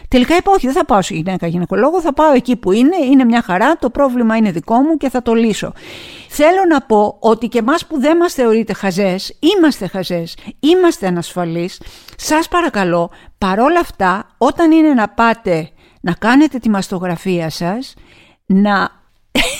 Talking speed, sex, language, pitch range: 170 wpm, female, Greek, 185-255 Hz